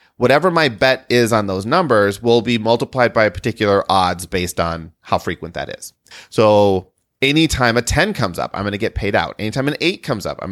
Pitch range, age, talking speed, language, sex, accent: 105-140 Hz, 30-49, 210 wpm, English, male, American